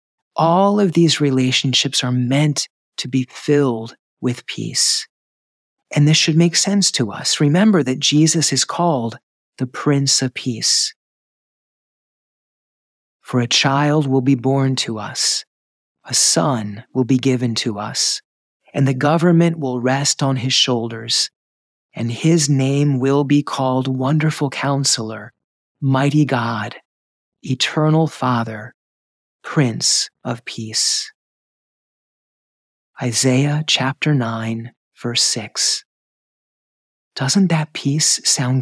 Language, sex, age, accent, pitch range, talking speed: English, male, 40-59, American, 125-150 Hz, 115 wpm